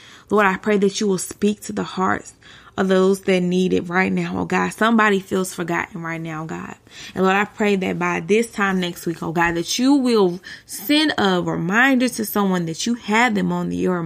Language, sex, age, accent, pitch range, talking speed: English, female, 20-39, American, 180-215 Hz, 220 wpm